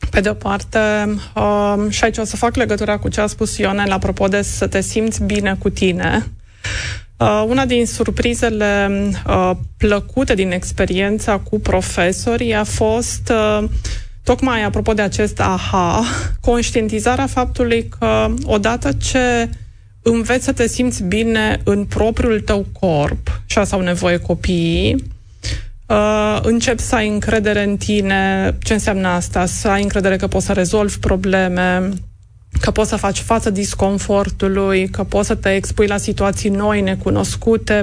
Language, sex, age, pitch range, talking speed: Romanian, female, 20-39, 180-215 Hz, 145 wpm